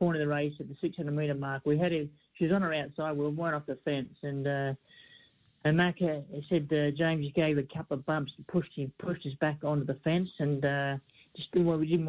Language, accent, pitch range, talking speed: English, Australian, 140-155 Hz, 250 wpm